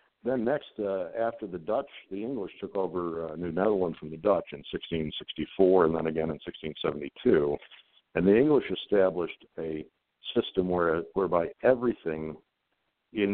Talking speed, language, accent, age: 145 wpm, English, American, 60-79